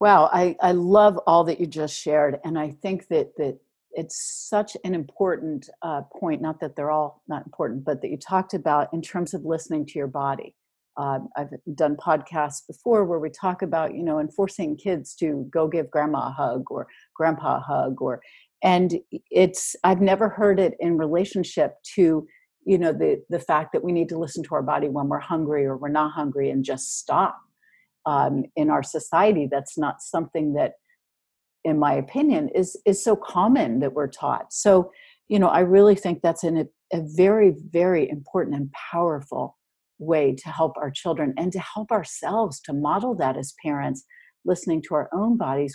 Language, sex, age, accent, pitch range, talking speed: English, female, 50-69, American, 150-190 Hz, 190 wpm